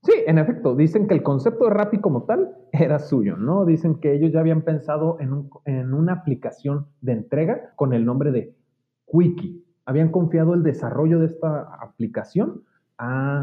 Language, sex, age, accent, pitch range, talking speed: Spanish, male, 30-49, Mexican, 125-170 Hz, 180 wpm